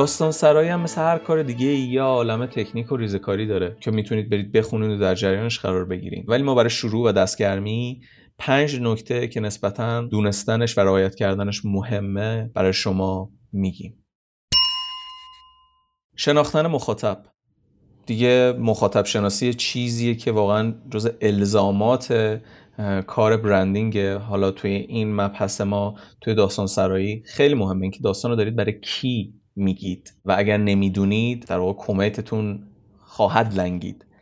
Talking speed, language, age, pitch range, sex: 135 wpm, Persian, 30-49, 100-120 Hz, male